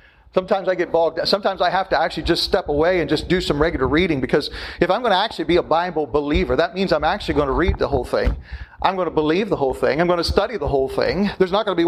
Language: English